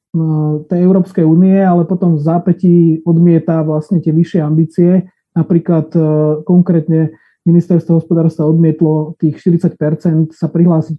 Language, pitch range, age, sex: Slovak, 165-185 Hz, 30-49, male